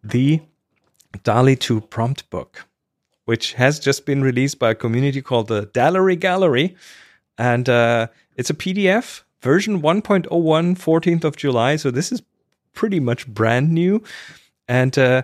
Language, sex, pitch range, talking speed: English, male, 120-155 Hz, 140 wpm